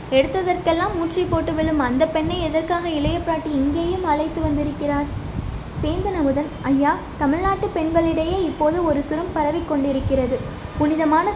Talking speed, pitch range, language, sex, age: 105 wpm, 285-350 Hz, Tamil, female, 20-39